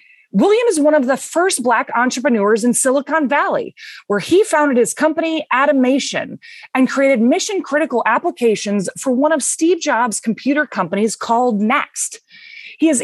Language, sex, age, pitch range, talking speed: English, female, 20-39, 225-310 Hz, 145 wpm